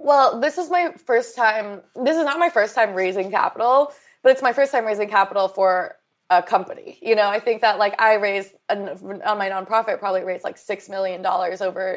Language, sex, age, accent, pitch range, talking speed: English, female, 20-39, American, 190-220 Hz, 205 wpm